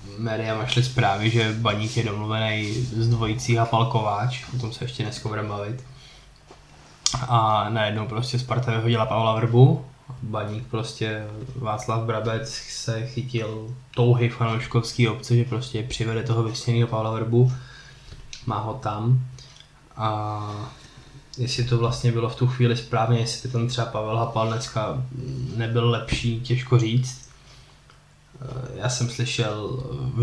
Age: 20-39